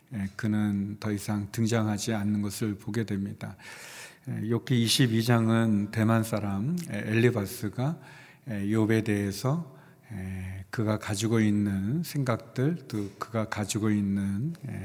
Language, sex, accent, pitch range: Korean, male, native, 105-120 Hz